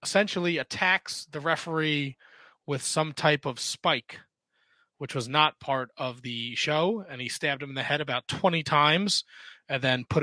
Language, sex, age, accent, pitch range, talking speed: English, male, 30-49, American, 130-165 Hz, 170 wpm